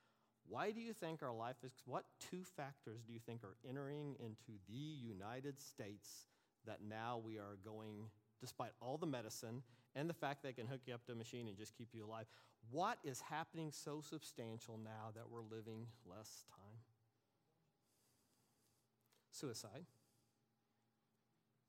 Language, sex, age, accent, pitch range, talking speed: English, male, 40-59, American, 110-135 Hz, 155 wpm